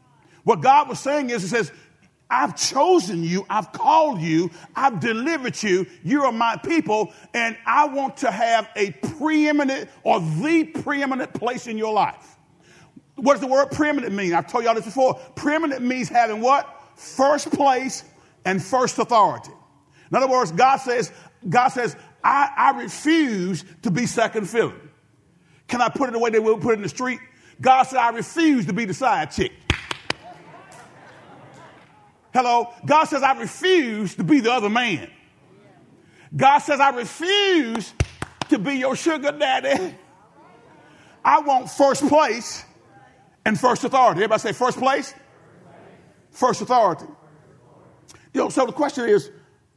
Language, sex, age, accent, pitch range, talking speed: English, male, 50-69, American, 200-280 Hz, 155 wpm